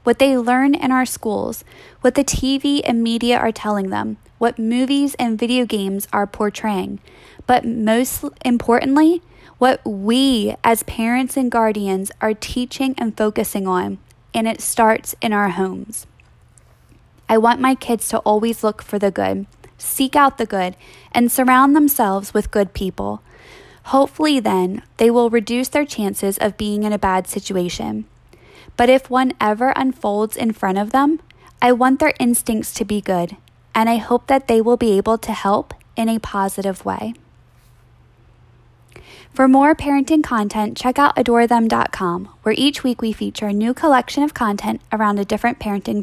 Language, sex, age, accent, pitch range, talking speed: English, female, 10-29, American, 205-255 Hz, 165 wpm